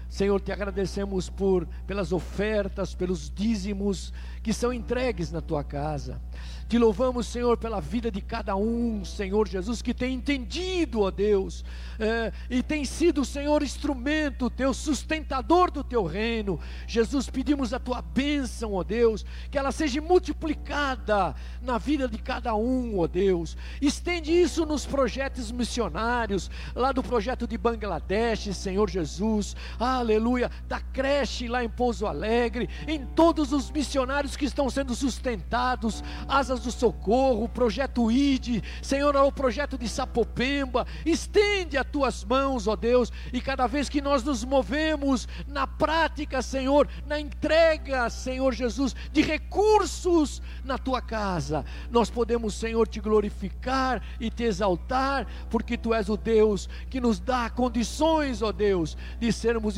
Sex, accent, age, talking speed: male, Brazilian, 60-79, 140 wpm